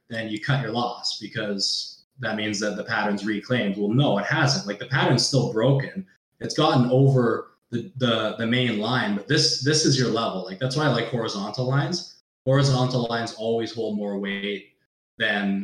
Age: 20-39